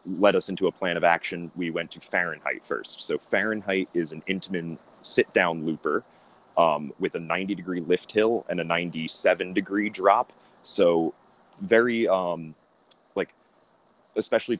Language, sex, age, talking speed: English, male, 30-49, 150 wpm